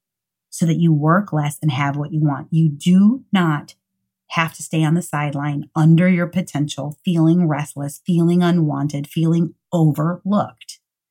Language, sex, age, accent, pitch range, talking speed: English, female, 30-49, American, 145-175 Hz, 150 wpm